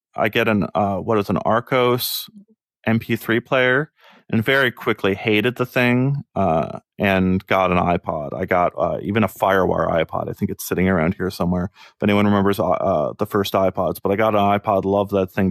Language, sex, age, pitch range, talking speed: English, male, 30-49, 95-125 Hz, 195 wpm